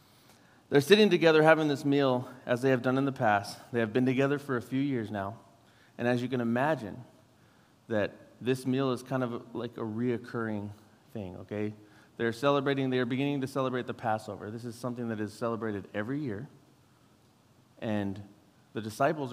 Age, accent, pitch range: 30-49, American, 110-135 Hz